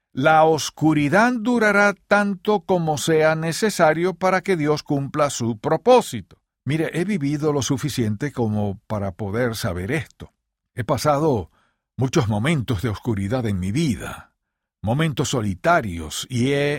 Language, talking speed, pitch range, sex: Spanish, 130 wpm, 125-160 Hz, male